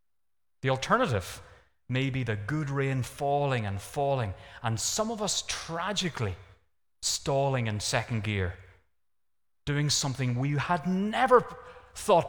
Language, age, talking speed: English, 30-49, 120 wpm